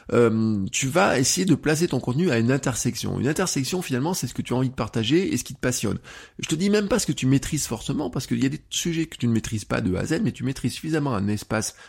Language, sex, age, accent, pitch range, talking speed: French, male, 20-39, French, 100-135 Hz, 295 wpm